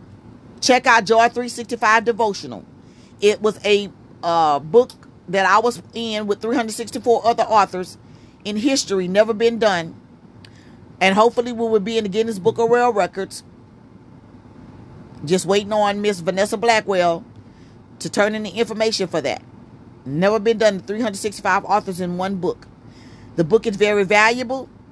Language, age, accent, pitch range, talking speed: English, 40-59, American, 185-230 Hz, 145 wpm